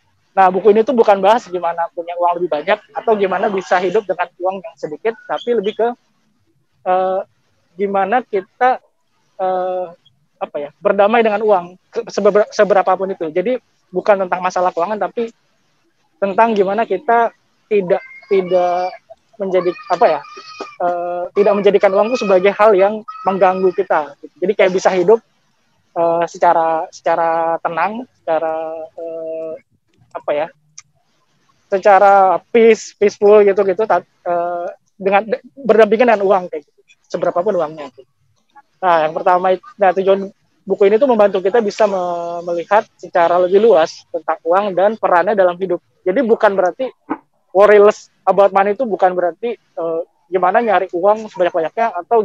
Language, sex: Indonesian, male